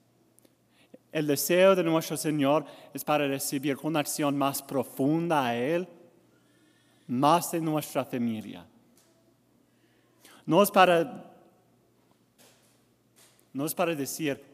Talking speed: 100 wpm